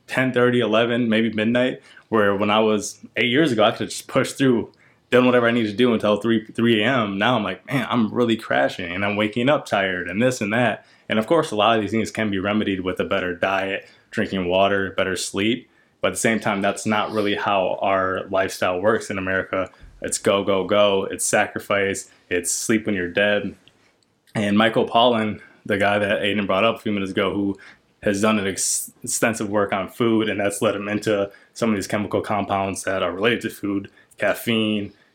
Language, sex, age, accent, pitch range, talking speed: English, male, 20-39, American, 100-115 Hz, 215 wpm